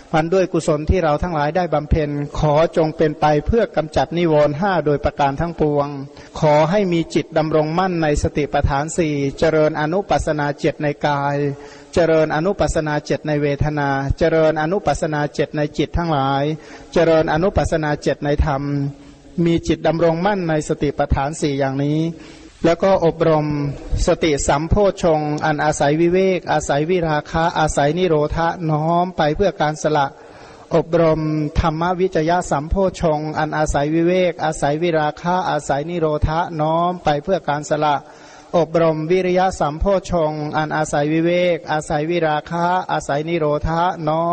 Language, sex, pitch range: Thai, male, 150-170 Hz